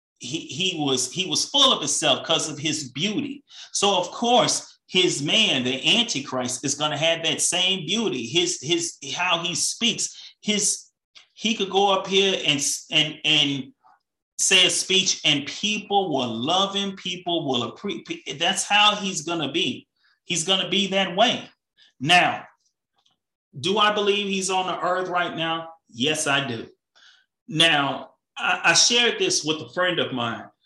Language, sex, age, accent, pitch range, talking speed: English, male, 30-49, American, 130-190 Hz, 165 wpm